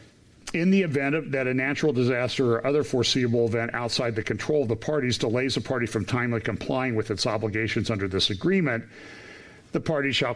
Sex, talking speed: male, 185 wpm